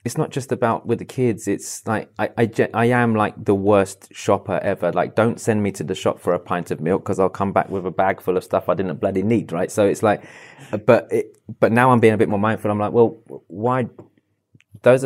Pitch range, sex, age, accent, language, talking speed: 100-115 Hz, male, 20-39, British, English, 250 wpm